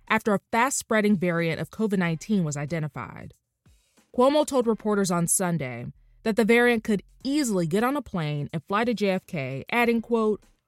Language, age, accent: English, 20-39, American